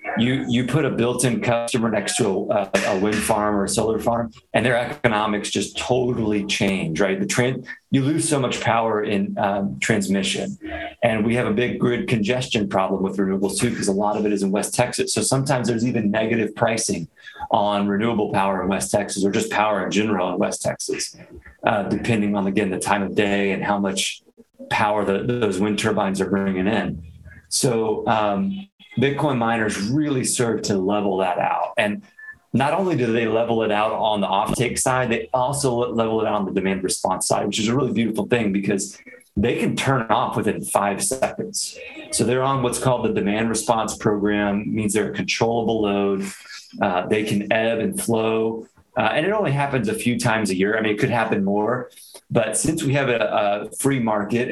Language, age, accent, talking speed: English, 30-49, American, 200 wpm